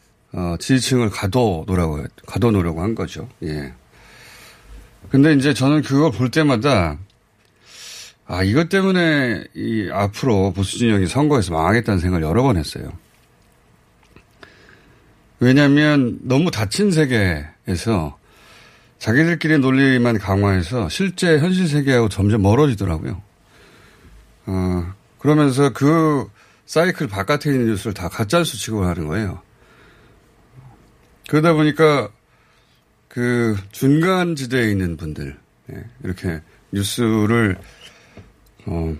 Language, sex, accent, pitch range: Korean, male, native, 95-135 Hz